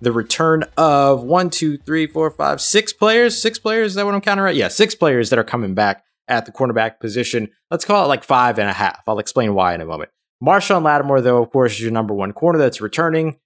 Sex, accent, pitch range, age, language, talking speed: male, American, 105-155 Hz, 20-39, English, 245 wpm